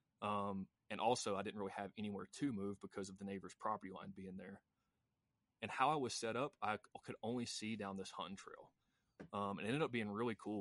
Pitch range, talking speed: 100-110 Hz, 225 wpm